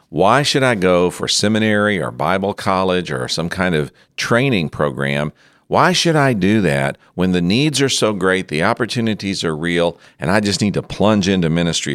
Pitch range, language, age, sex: 80-110 Hz, English, 50-69, male